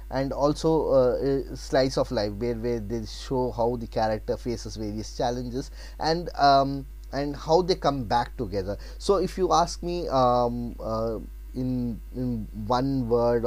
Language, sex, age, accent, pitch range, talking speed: Telugu, male, 20-39, native, 115-145 Hz, 155 wpm